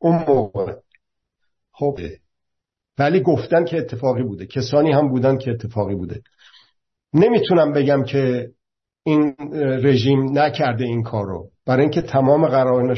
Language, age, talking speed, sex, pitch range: Persian, 50-69, 115 wpm, male, 125-155 Hz